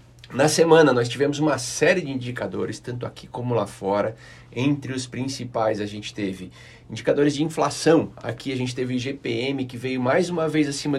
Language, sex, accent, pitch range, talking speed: Portuguese, male, Brazilian, 125-160 Hz, 180 wpm